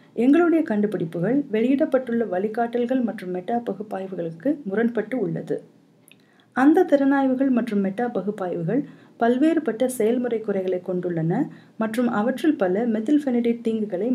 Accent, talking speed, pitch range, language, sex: native, 100 wpm, 195-255 Hz, Tamil, female